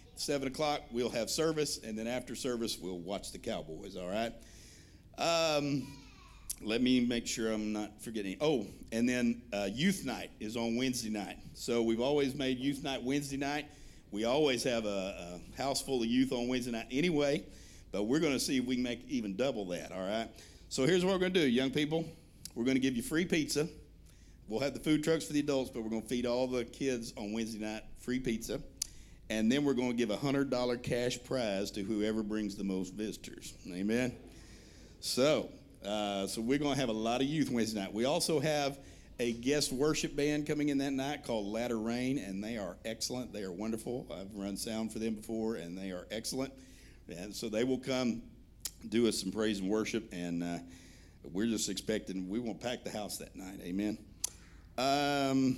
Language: English